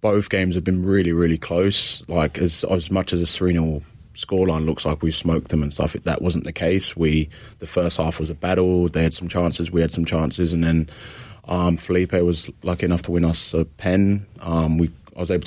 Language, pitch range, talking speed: English, 80-90 Hz, 230 wpm